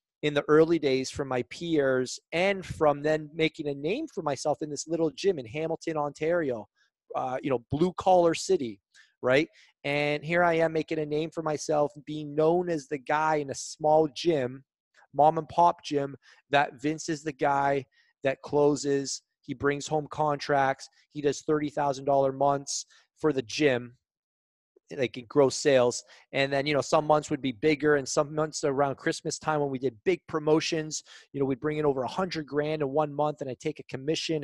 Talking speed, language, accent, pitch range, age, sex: 195 wpm, English, American, 140-160 Hz, 30-49, male